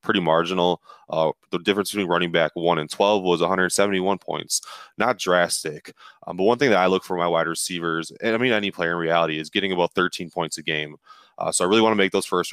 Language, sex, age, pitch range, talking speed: English, male, 20-39, 85-100 Hz, 240 wpm